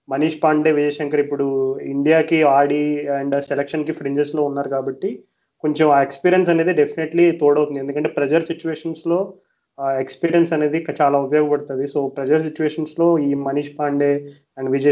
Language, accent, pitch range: Telugu, native, 140-155 Hz